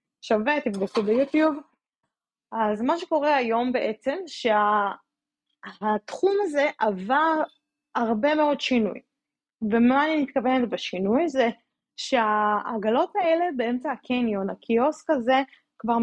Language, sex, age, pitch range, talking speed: Hebrew, female, 20-39, 215-280 Hz, 100 wpm